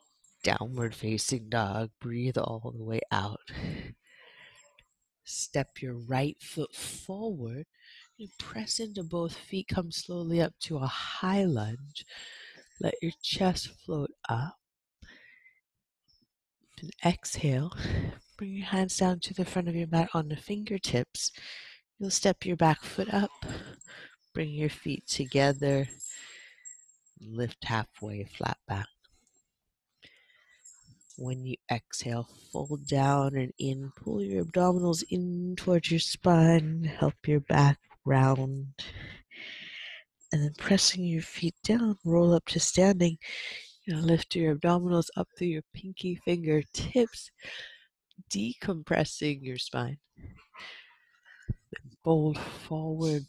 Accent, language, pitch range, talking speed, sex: American, English, 135-185 Hz, 115 wpm, female